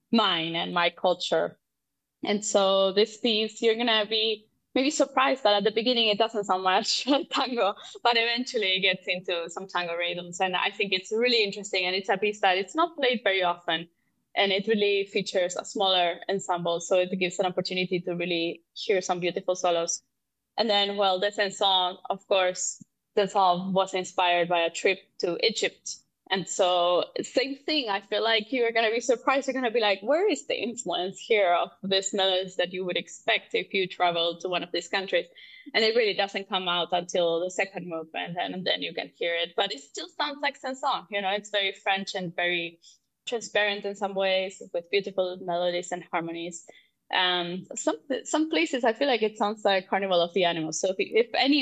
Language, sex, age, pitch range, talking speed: English, female, 20-39, 180-225 Hz, 205 wpm